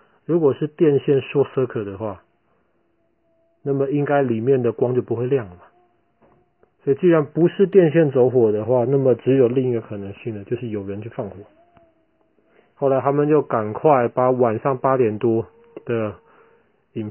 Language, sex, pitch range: Chinese, male, 115-155 Hz